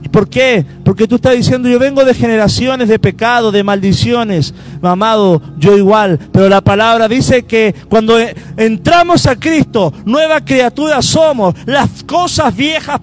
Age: 50-69